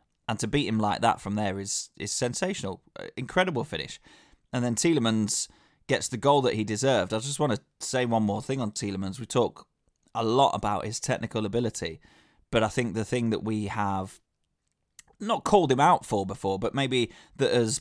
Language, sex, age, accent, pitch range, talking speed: English, male, 20-39, British, 105-130 Hz, 195 wpm